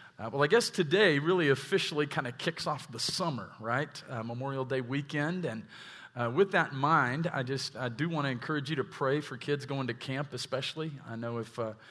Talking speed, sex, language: 220 wpm, male, English